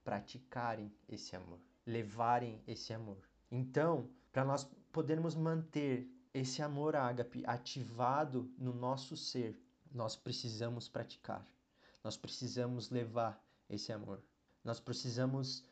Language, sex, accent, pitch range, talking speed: Portuguese, male, Brazilian, 125-145 Hz, 105 wpm